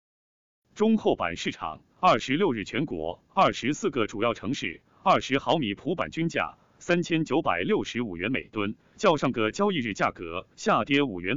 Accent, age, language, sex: native, 30-49, Chinese, male